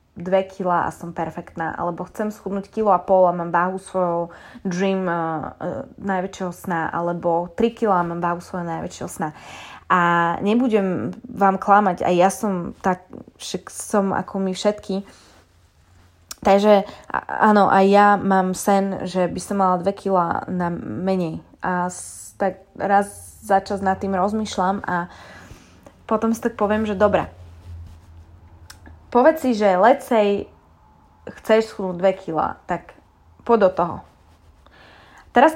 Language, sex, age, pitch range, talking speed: Slovak, female, 20-39, 175-210 Hz, 135 wpm